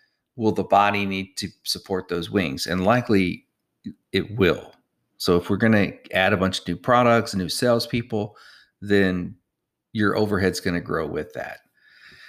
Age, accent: 40-59, American